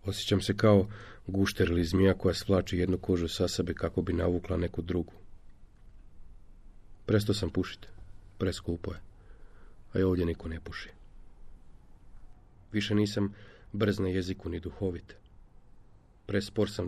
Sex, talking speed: male, 130 wpm